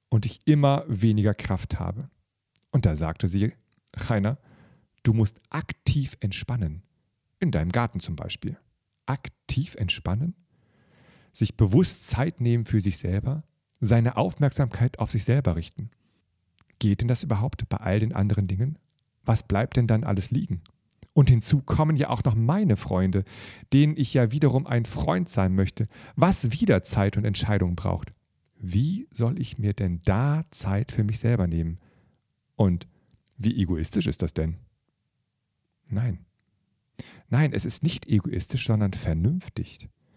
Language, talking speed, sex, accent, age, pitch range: German, 145 wpm, male, German, 40-59, 100-130 Hz